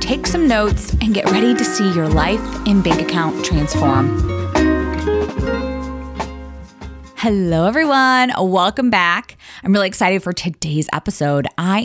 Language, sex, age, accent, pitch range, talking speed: English, female, 20-39, American, 160-225 Hz, 125 wpm